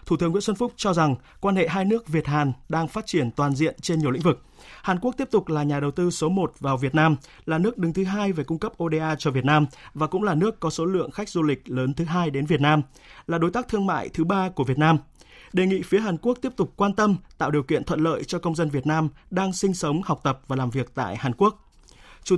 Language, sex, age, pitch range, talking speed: Vietnamese, male, 20-39, 140-185 Hz, 275 wpm